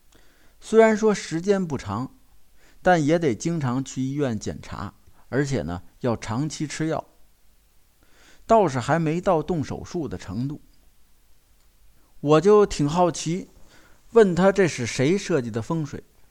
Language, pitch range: Chinese, 115-185 Hz